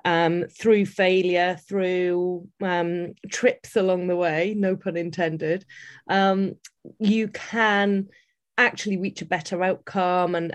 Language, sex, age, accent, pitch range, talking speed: English, female, 30-49, British, 170-210 Hz, 120 wpm